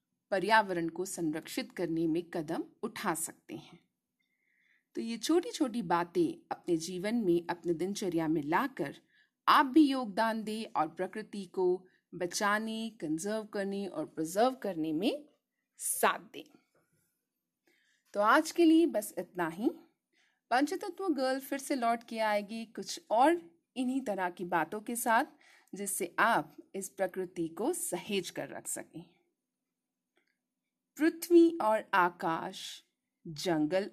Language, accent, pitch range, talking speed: English, Indian, 185-290 Hz, 110 wpm